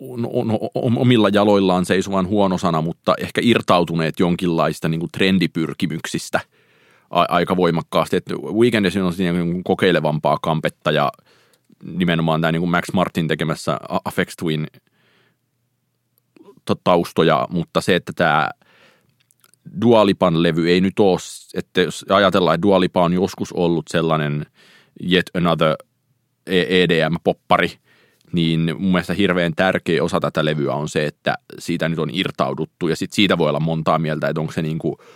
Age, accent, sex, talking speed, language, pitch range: 30-49, native, male, 135 wpm, Finnish, 80-95 Hz